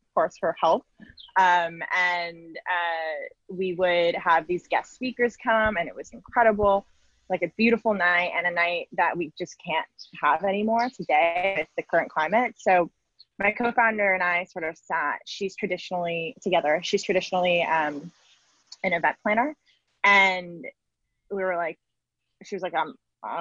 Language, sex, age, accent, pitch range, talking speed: English, female, 20-39, American, 165-215 Hz, 155 wpm